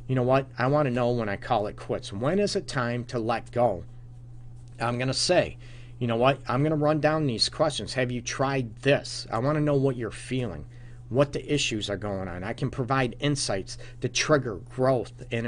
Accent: American